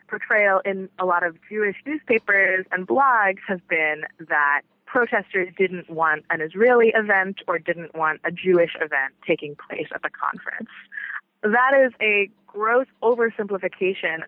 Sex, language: female, English